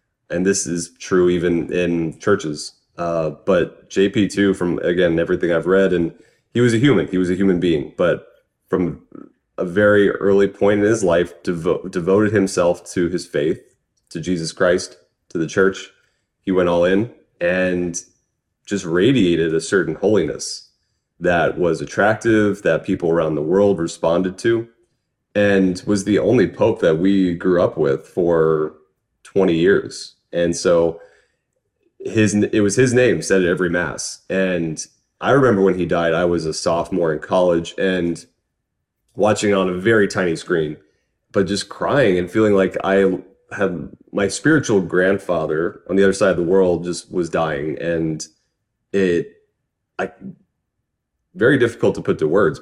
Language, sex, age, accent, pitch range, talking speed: English, male, 30-49, American, 85-100 Hz, 160 wpm